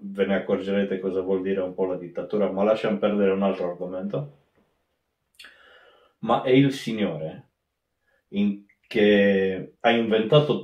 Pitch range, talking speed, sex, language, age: 95-130 Hz, 135 wpm, male, Italian, 30-49